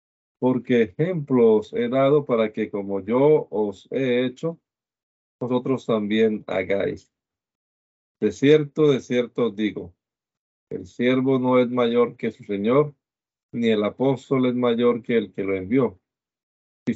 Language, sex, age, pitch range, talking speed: Spanish, male, 40-59, 105-145 Hz, 140 wpm